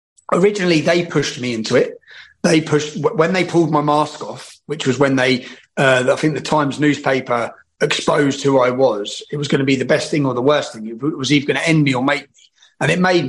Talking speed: 240 wpm